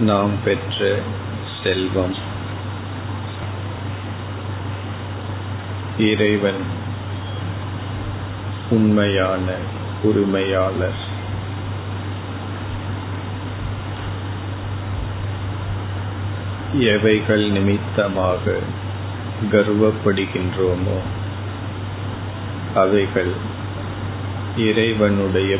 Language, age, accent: Tamil, 50-69, native